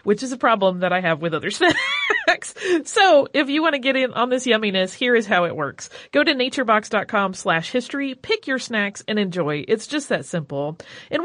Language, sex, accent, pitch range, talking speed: English, female, American, 200-280 Hz, 215 wpm